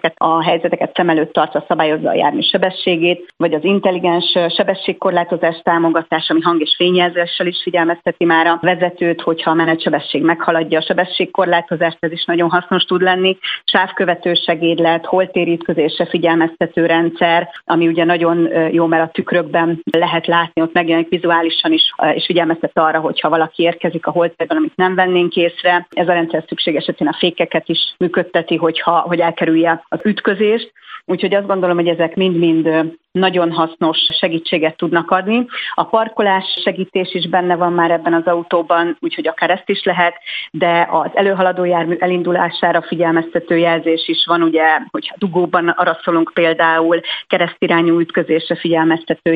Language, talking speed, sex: Hungarian, 150 wpm, female